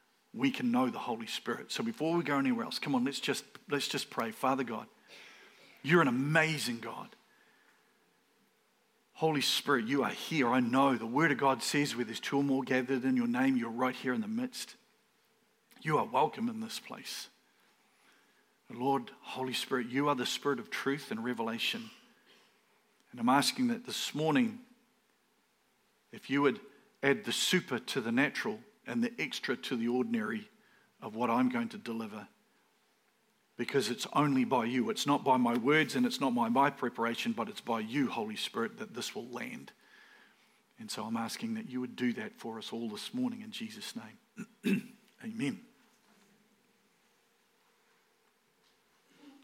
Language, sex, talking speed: English, male, 170 wpm